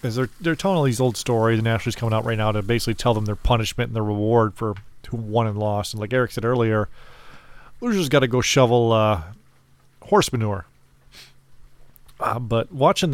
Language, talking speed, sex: English, 200 wpm, male